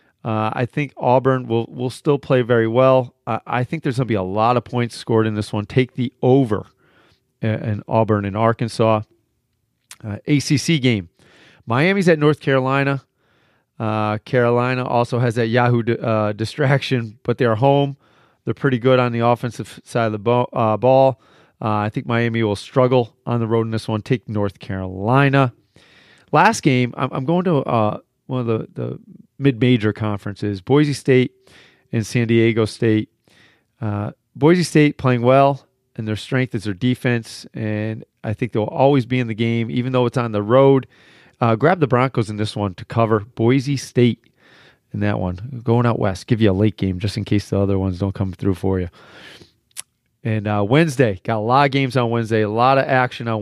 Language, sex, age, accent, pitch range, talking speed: English, male, 40-59, American, 110-130 Hz, 190 wpm